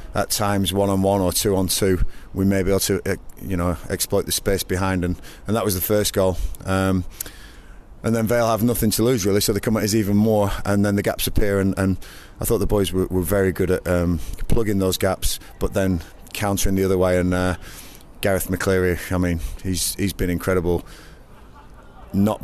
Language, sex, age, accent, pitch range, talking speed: English, male, 30-49, British, 90-100 Hz, 210 wpm